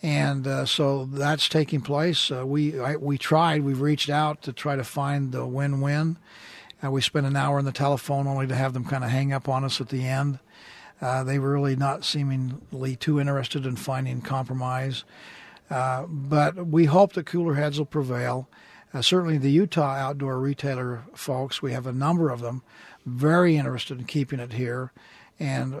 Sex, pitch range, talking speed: male, 130-150 Hz, 190 wpm